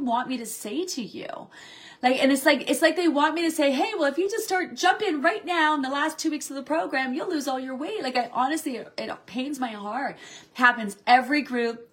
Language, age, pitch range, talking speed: English, 30-49, 245-320 Hz, 255 wpm